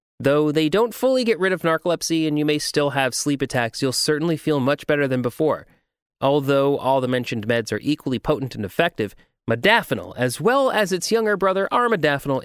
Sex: male